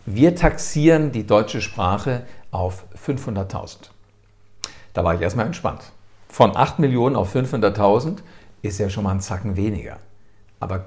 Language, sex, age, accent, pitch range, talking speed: German, male, 50-69, German, 100-120 Hz, 140 wpm